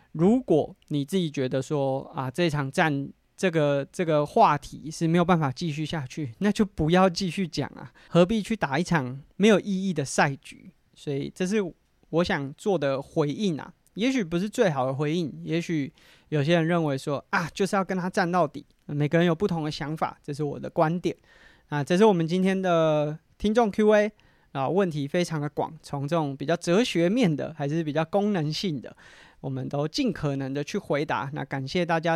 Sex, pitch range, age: male, 145-180 Hz, 20-39